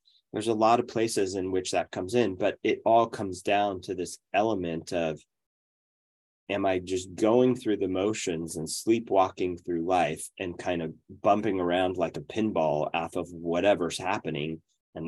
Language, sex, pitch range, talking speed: English, male, 80-100 Hz, 170 wpm